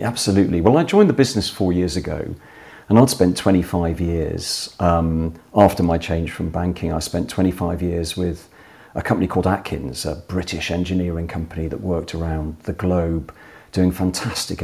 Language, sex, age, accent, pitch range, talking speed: English, male, 40-59, British, 85-95 Hz, 165 wpm